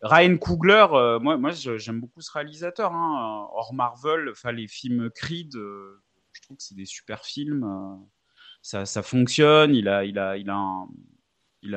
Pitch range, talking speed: 110-140 Hz, 180 wpm